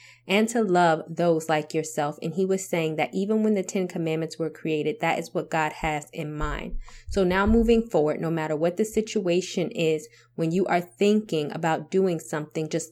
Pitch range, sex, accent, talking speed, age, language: 155-190 Hz, female, American, 200 wpm, 20-39, English